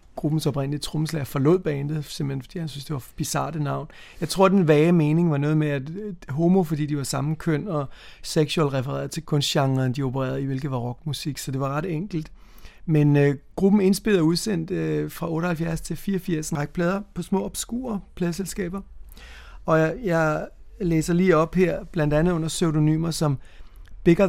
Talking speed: 185 wpm